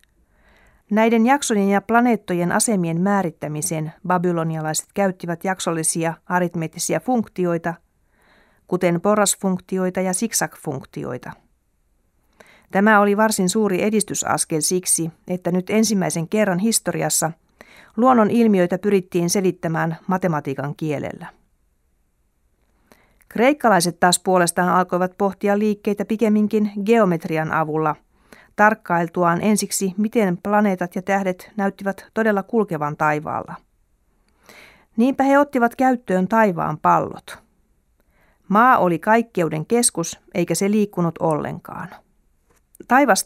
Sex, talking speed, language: female, 90 wpm, Finnish